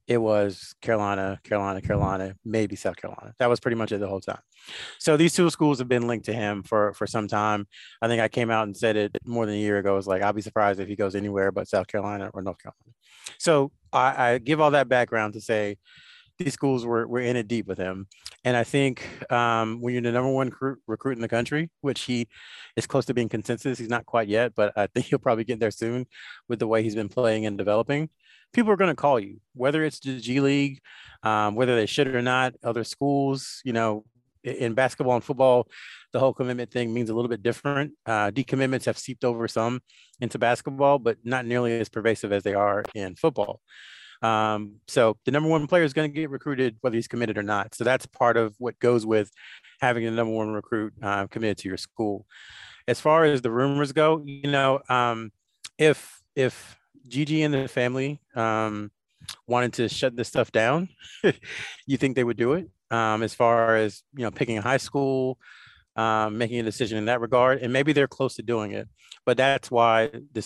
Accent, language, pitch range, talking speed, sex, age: American, English, 110-135 Hz, 220 wpm, male, 30-49